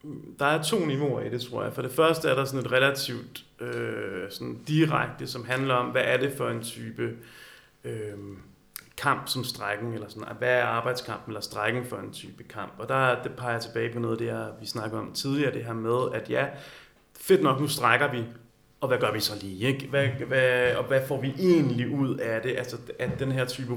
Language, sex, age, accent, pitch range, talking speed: Danish, male, 30-49, native, 115-140 Hz, 225 wpm